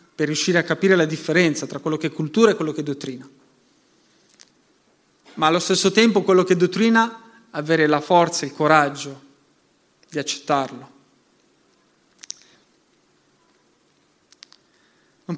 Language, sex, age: Italian, male, 30-49